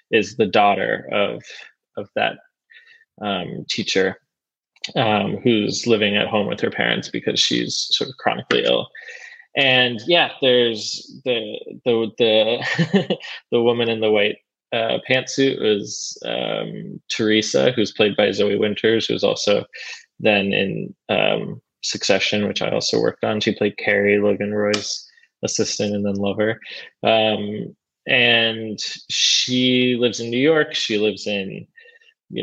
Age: 20-39